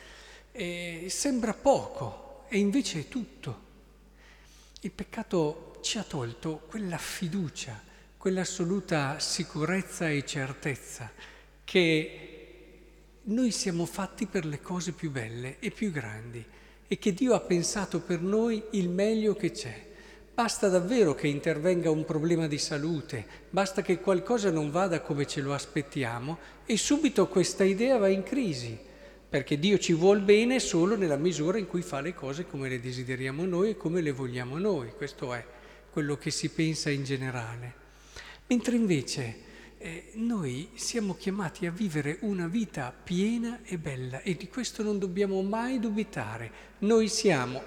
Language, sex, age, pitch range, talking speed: Italian, male, 50-69, 150-205 Hz, 145 wpm